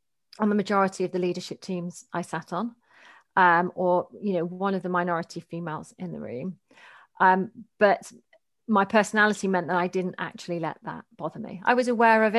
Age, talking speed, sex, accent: 40-59, 190 wpm, female, British